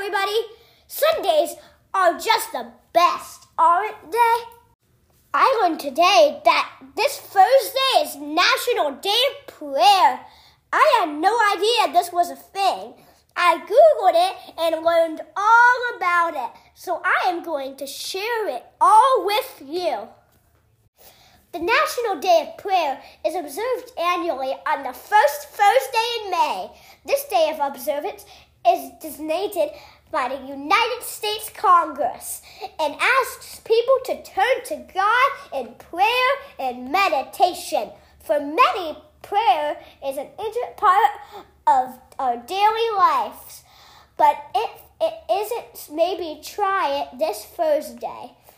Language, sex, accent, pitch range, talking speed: English, female, American, 310-425 Hz, 125 wpm